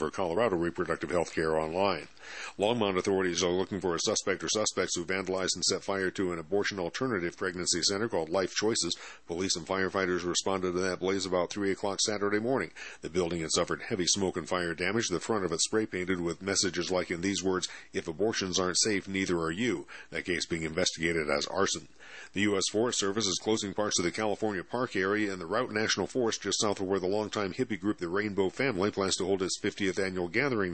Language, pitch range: English, 90-105 Hz